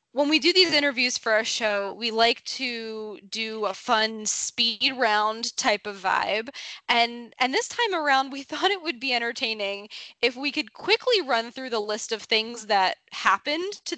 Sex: female